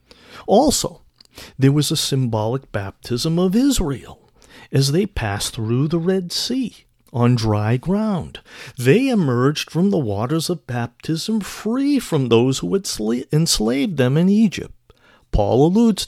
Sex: male